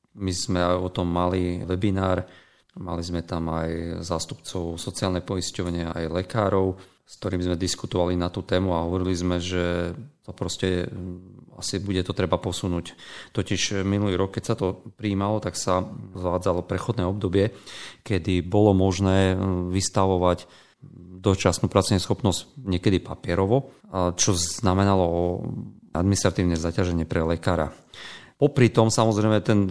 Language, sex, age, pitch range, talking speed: Slovak, male, 40-59, 90-100 Hz, 135 wpm